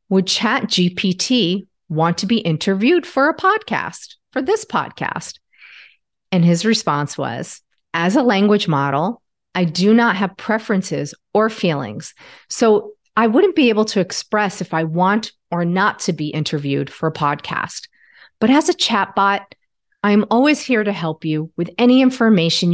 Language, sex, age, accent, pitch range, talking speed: English, female, 40-59, American, 165-235 Hz, 155 wpm